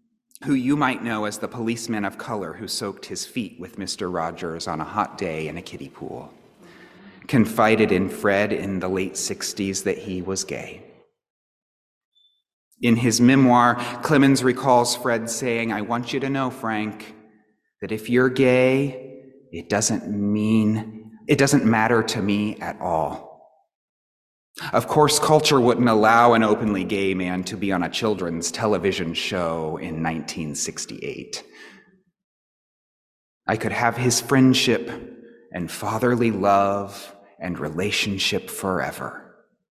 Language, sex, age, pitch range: English, male, 30-49, 100-125 Hz